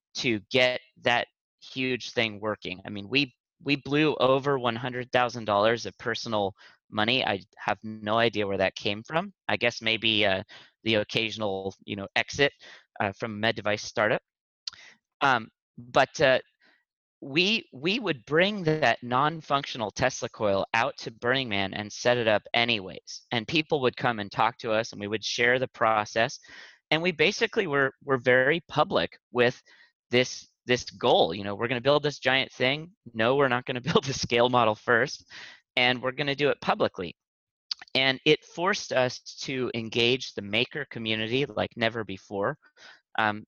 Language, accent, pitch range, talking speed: English, American, 110-135 Hz, 170 wpm